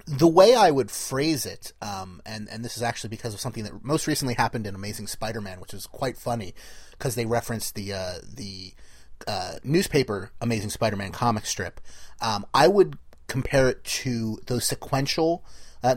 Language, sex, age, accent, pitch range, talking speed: English, male, 30-49, American, 110-140 Hz, 175 wpm